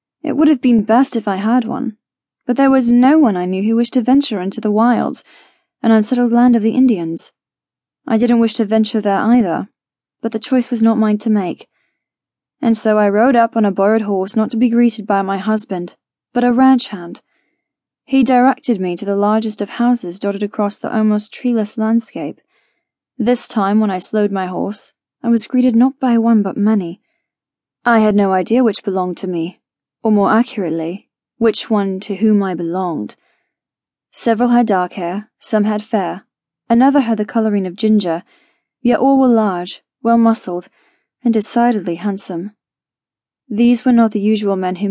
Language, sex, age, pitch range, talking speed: English, female, 10-29, 200-240 Hz, 185 wpm